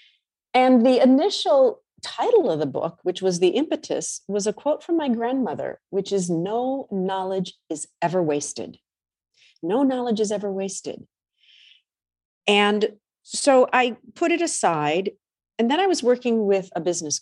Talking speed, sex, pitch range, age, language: 150 wpm, female, 160-220 Hz, 40-59, English